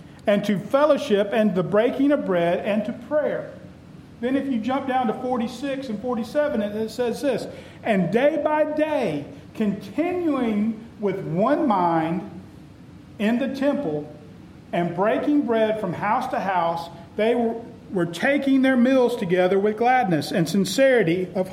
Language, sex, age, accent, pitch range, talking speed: English, male, 40-59, American, 175-250 Hz, 150 wpm